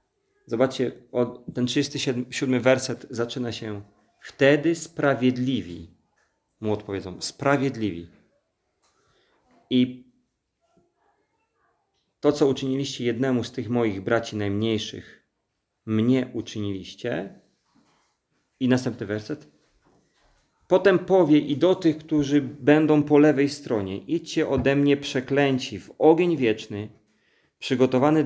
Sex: male